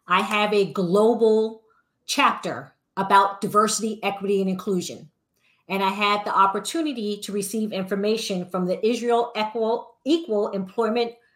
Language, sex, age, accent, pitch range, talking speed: English, female, 40-59, American, 195-240 Hz, 125 wpm